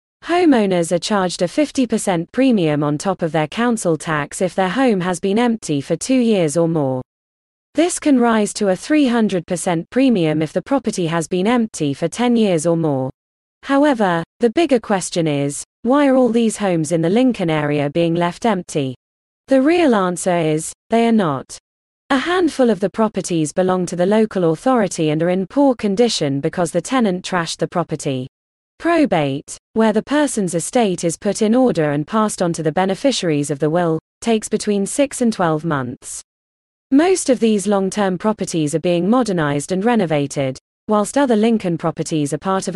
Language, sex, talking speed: English, female, 180 wpm